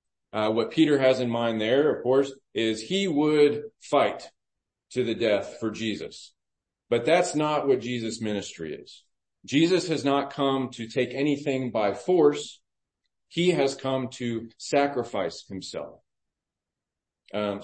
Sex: male